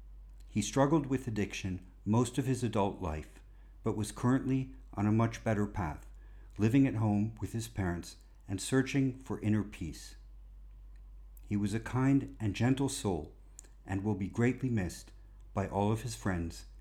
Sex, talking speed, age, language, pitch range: male, 160 wpm, 50-69, English, 90-125 Hz